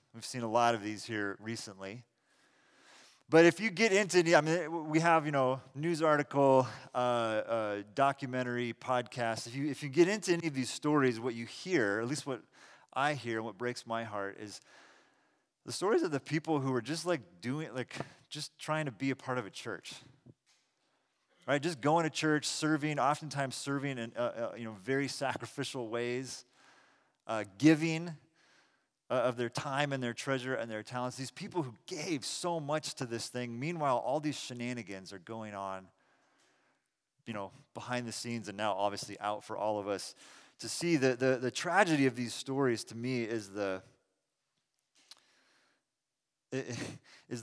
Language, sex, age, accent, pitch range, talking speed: English, male, 30-49, American, 115-145 Hz, 175 wpm